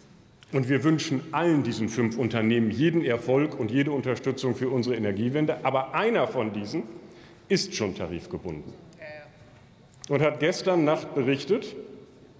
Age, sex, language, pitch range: 40-59, male, German, 130-155 Hz